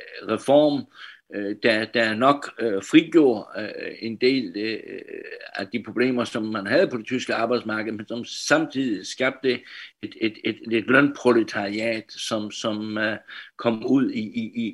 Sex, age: male, 60-79